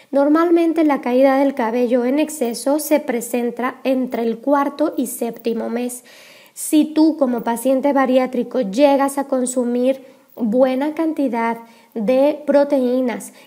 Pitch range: 245-285 Hz